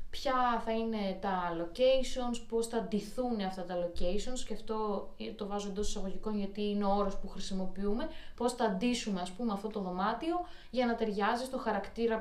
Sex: female